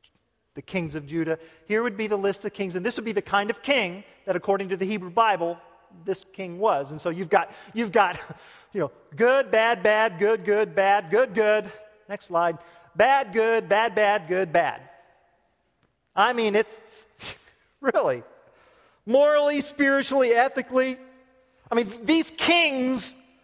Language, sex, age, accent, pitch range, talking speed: English, male, 40-59, American, 185-260 Hz, 160 wpm